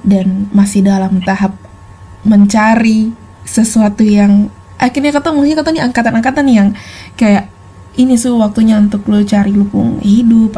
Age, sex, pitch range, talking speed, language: 20-39, female, 200-230 Hz, 130 wpm, Indonesian